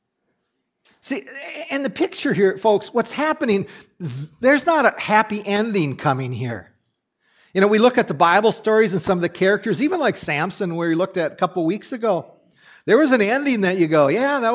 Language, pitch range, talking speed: English, 140-205 Hz, 200 wpm